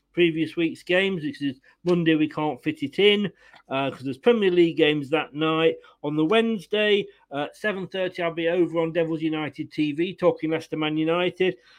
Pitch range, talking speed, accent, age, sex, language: 140-180 Hz, 185 wpm, British, 40-59, male, English